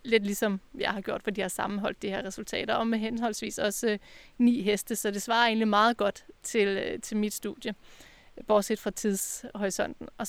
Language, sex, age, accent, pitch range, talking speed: Danish, female, 30-49, native, 205-230 Hz, 200 wpm